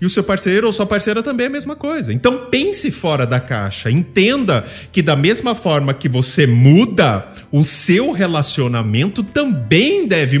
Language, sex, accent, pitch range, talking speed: Portuguese, male, Brazilian, 140-215 Hz, 175 wpm